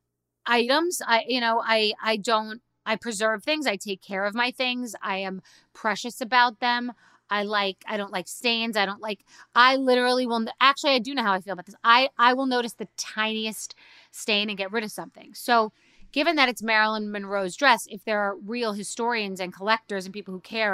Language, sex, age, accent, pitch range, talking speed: English, female, 30-49, American, 195-245 Hz, 210 wpm